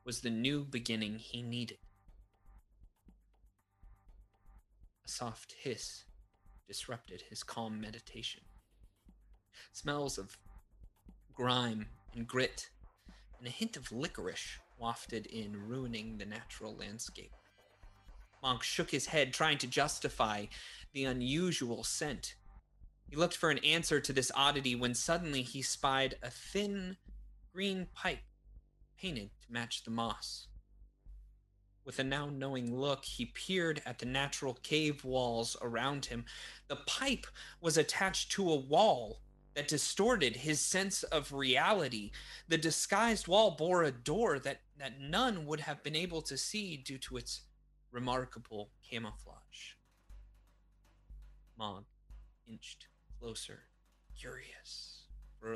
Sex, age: male, 30-49